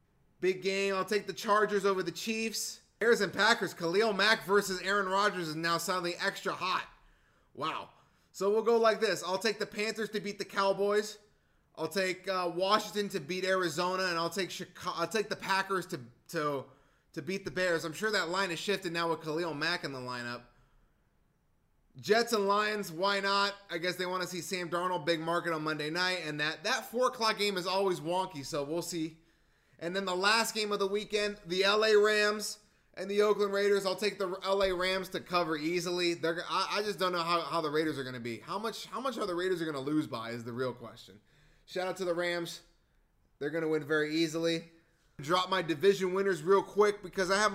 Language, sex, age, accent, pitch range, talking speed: English, male, 20-39, American, 165-200 Hz, 220 wpm